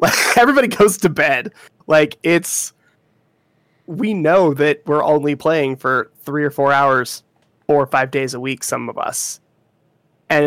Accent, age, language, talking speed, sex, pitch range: American, 20-39, English, 155 wpm, male, 135-155 Hz